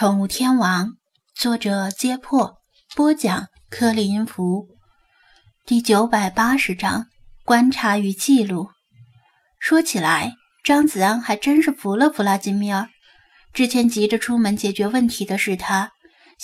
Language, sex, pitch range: Chinese, female, 205-265 Hz